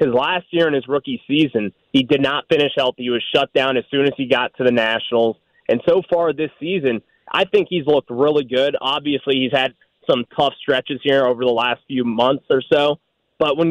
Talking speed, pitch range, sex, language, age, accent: 225 wpm, 125-170 Hz, male, English, 20-39, American